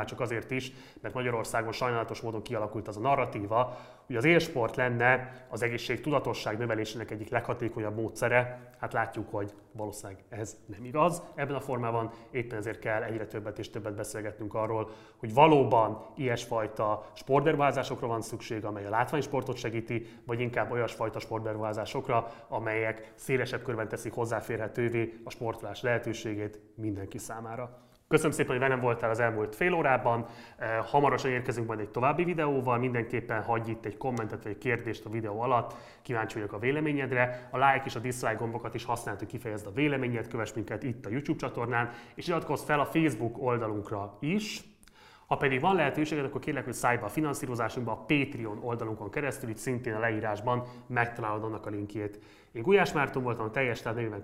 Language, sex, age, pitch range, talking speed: Hungarian, male, 30-49, 110-130 Hz, 165 wpm